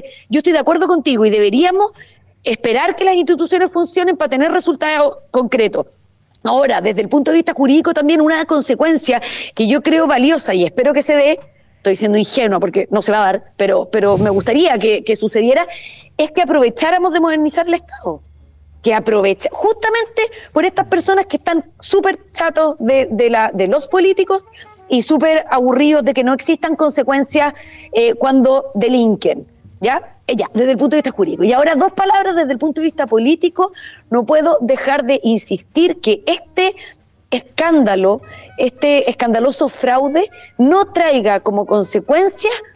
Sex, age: female, 30-49